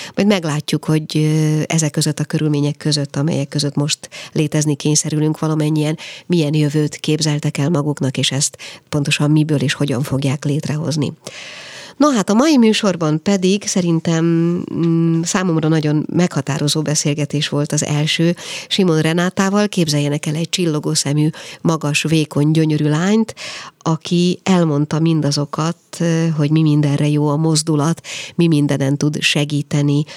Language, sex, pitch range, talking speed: Hungarian, female, 145-165 Hz, 135 wpm